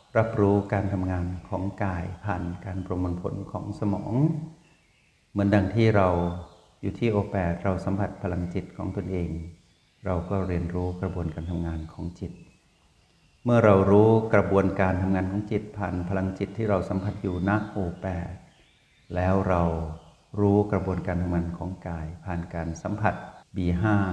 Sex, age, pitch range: male, 60-79, 85-105 Hz